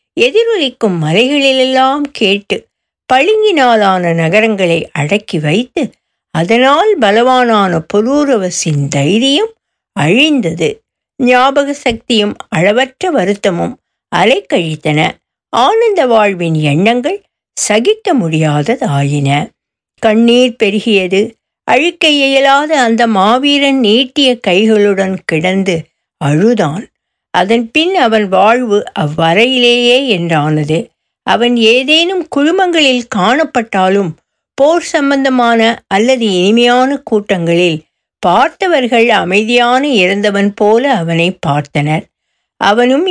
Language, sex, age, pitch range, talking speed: Tamil, female, 60-79, 185-270 Hz, 75 wpm